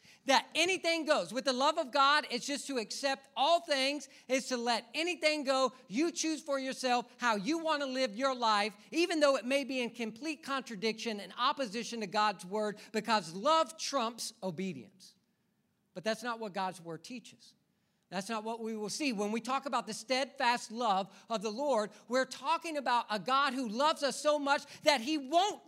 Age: 40-59